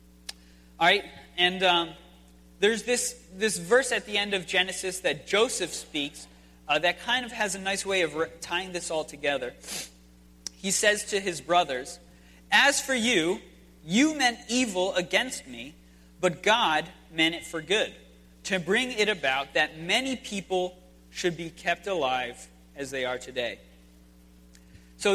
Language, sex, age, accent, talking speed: English, male, 30-49, American, 155 wpm